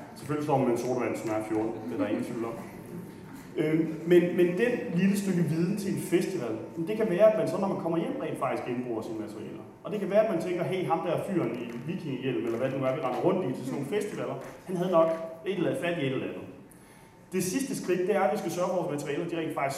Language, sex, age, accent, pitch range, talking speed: Danish, male, 30-49, native, 140-180 Hz, 280 wpm